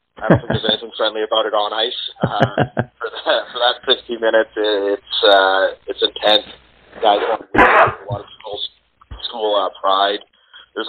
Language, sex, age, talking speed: English, male, 30-49, 175 wpm